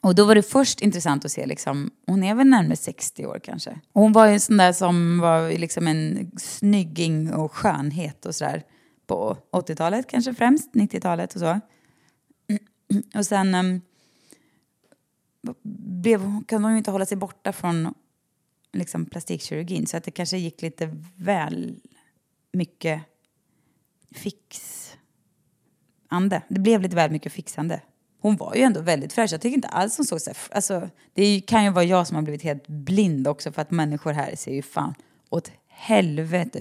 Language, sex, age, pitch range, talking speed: English, female, 20-39, 155-205 Hz, 170 wpm